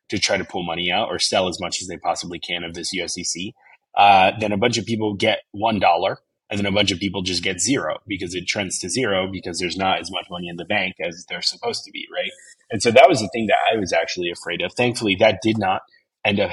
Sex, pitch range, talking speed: male, 90-105 Hz, 260 wpm